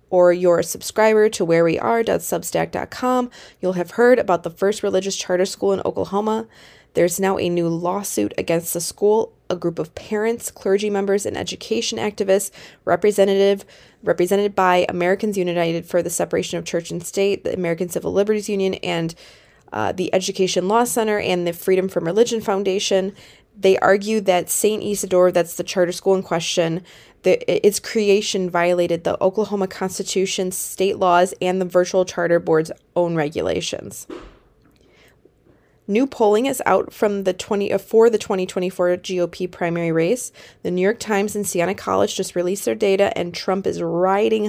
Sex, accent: female, American